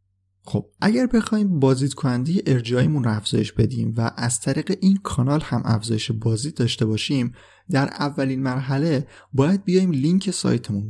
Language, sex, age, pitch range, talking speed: Persian, male, 30-49, 110-145 Hz, 140 wpm